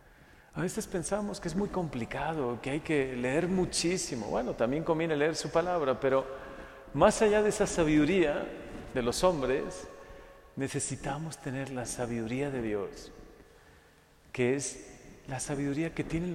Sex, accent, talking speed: male, Mexican, 145 wpm